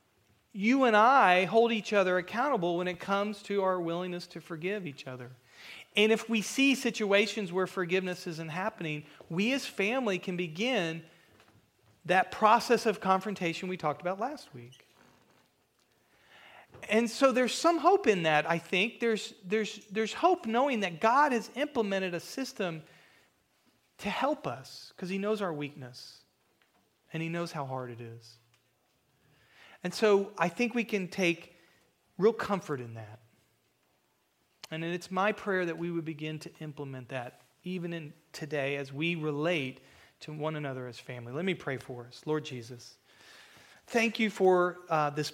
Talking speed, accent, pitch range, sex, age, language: 160 wpm, American, 145-205 Hz, male, 40-59, English